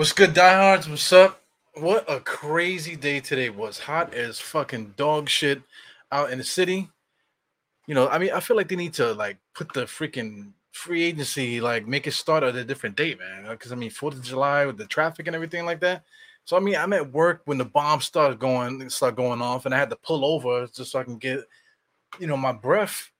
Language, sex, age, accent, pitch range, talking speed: English, male, 20-39, American, 130-170 Hz, 230 wpm